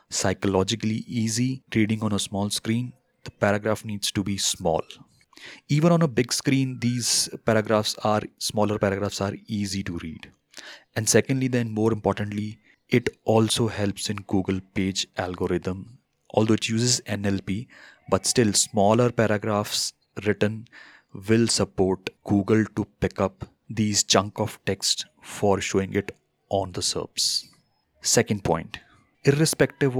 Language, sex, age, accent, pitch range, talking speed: English, male, 30-49, Indian, 100-115 Hz, 135 wpm